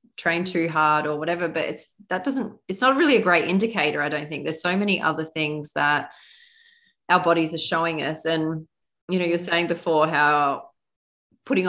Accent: Australian